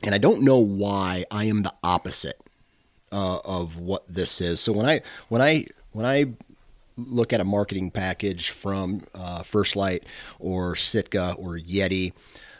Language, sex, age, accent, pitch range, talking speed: English, male, 30-49, American, 95-115 Hz, 165 wpm